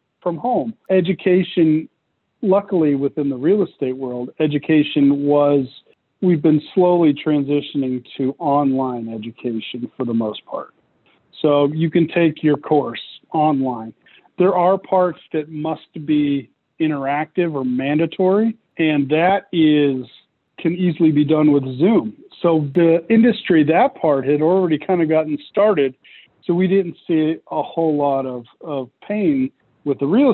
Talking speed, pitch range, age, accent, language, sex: 140 wpm, 140-175 Hz, 40-59, American, English, male